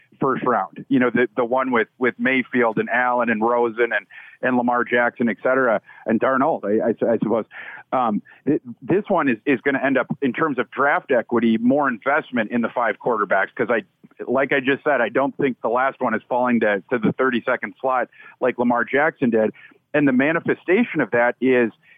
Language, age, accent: English, 40-59, American